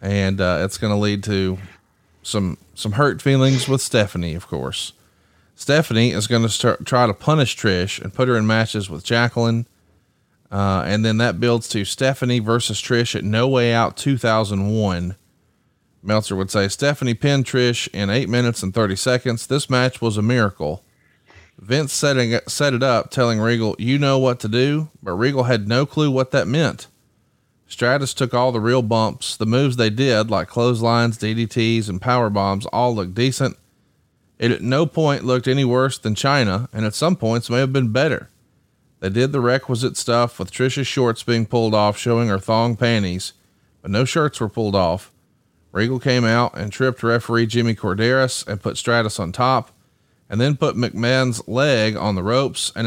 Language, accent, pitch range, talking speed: English, American, 105-130 Hz, 185 wpm